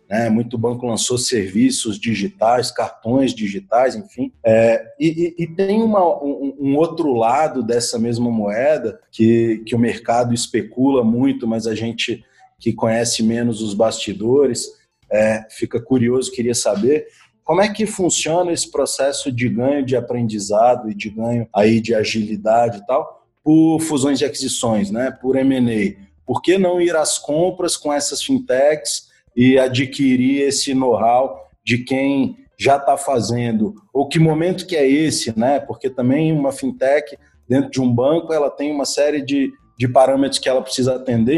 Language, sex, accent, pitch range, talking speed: Portuguese, male, Brazilian, 120-150 Hz, 160 wpm